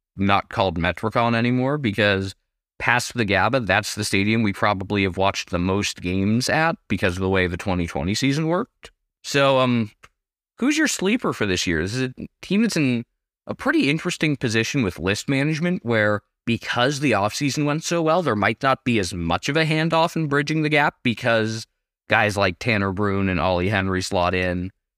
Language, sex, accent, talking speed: English, male, American, 185 wpm